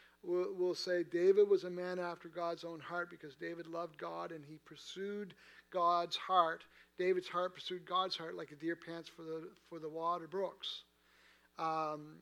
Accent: American